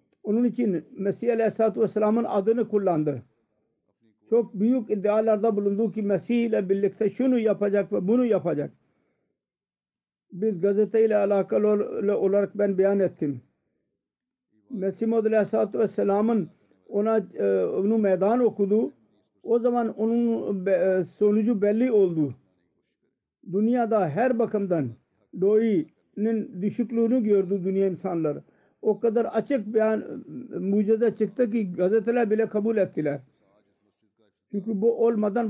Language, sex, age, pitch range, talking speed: Turkish, male, 50-69, 195-225 Hz, 115 wpm